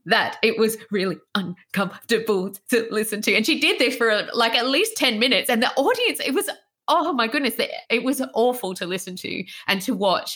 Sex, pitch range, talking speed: female, 195-260 Hz, 205 wpm